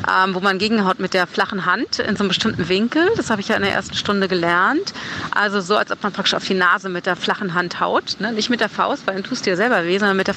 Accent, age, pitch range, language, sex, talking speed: German, 30-49, 190-250 Hz, German, female, 290 wpm